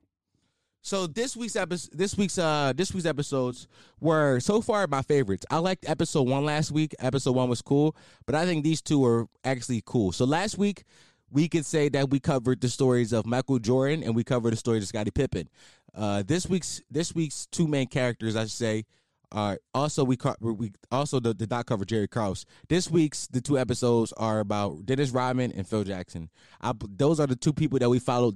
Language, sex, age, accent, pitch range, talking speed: English, male, 20-39, American, 120-185 Hz, 210 wpm